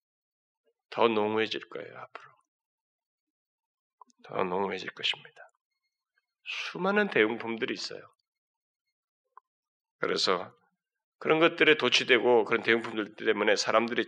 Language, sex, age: Korean, male, 40-59